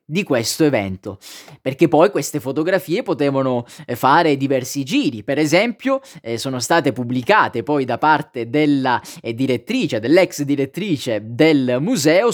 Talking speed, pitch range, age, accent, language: 125 wpm, 135-195 Hz, 20-39, native, Italian